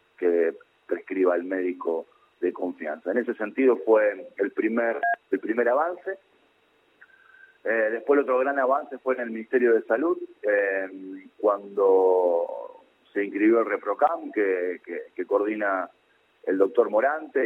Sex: male